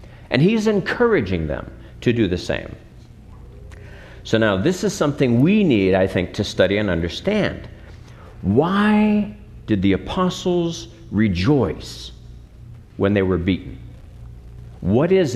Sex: male